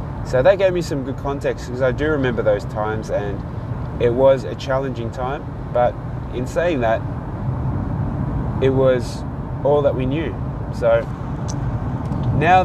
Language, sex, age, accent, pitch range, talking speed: English, male, 20-39, Australian, 120-135 Hz, 145 wpm